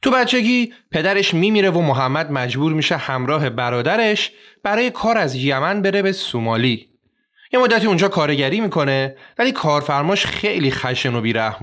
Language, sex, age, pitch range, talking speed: Persian, male, 30-49, 130-200 Hz, 145 wpm